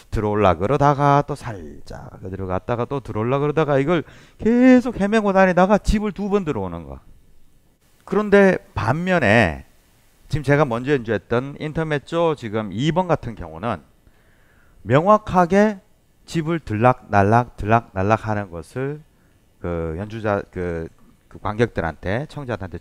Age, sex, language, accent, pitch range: 30-49, male, Korean, native, 100-165 Hz